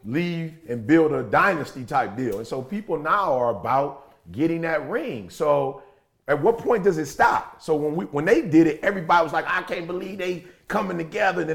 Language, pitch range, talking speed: English, 130-175 Hz, 210 wpm